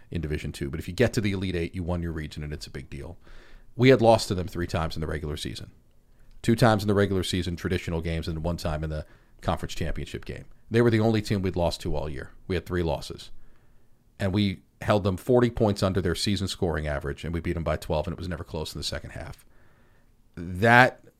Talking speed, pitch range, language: 250 wpm, 85-110 Hz, English